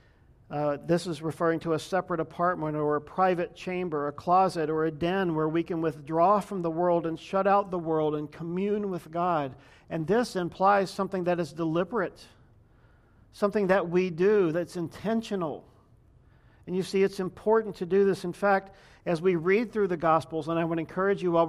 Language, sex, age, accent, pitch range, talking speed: English, male, 50-69, American, 155-185 Hz, 190 wpm